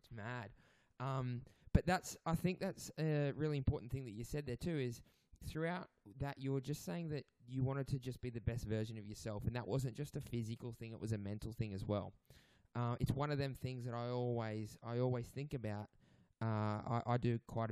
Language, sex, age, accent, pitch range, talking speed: English, male, 20-39, Australian, 105-130 Hz, 225 wpm